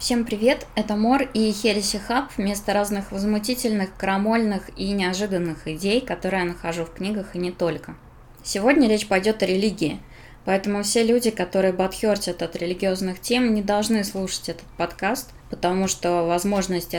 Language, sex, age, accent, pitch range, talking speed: Russian, female, 20-39, native, 170-205 Hz, 150 wpm